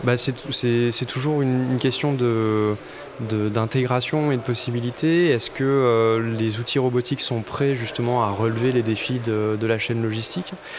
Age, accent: 20-39, French